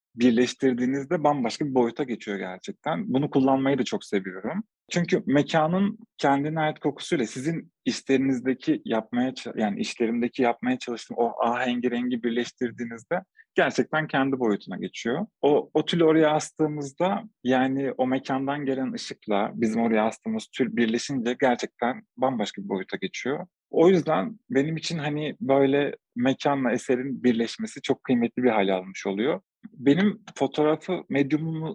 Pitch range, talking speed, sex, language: 125-155 Hz, 130 wpm, male, English